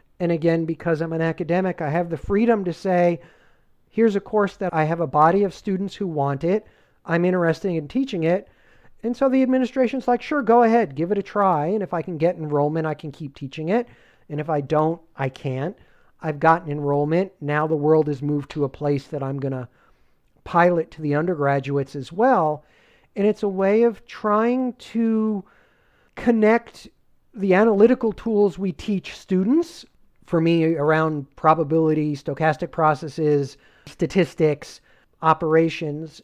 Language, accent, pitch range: English, American, 150-195 Hz